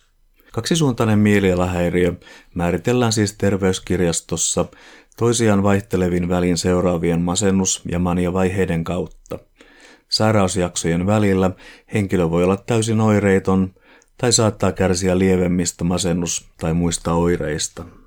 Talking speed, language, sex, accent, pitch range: 95 wpm, Finnish, male, native, 85-100 Hz